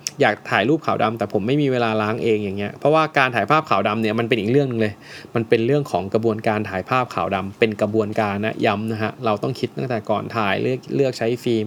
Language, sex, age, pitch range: Thai, male, 20-39, 105-130 Hz